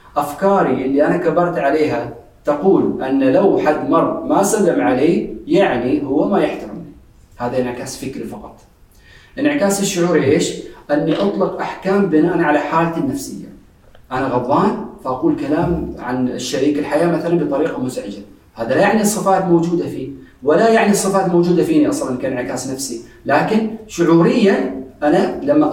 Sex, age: male, 40-59